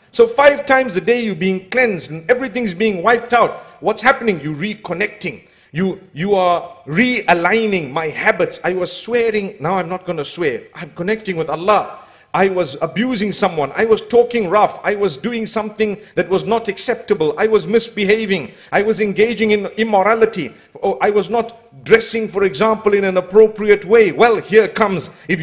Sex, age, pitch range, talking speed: male, 50-69, 170-225 Hz, 175 wpm